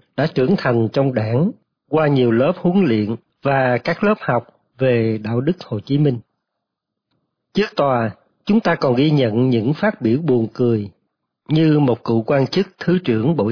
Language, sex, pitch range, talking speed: Vietnamese, male, 120-160 Hz, 180 wpm